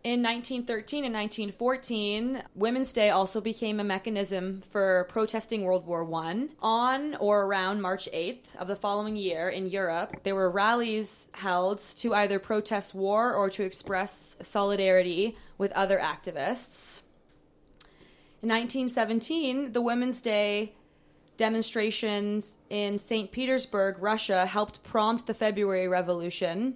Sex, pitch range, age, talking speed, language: female, 190-225 Hz, 20-39, 125 wpm, English